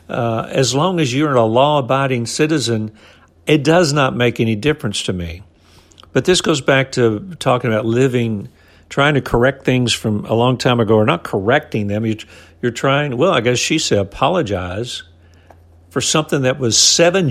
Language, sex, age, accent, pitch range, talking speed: English, male, 60-79, American, 100-140 Hz, 175 wpm